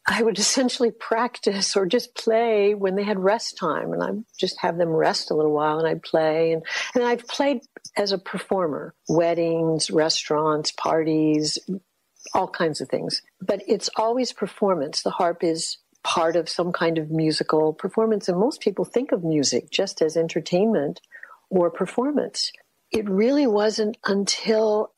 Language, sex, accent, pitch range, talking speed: English, female, American, 160-200 Hz, 160 wpm